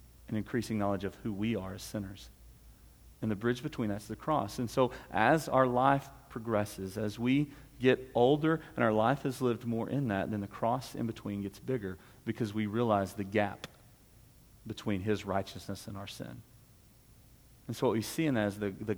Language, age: English, 40-59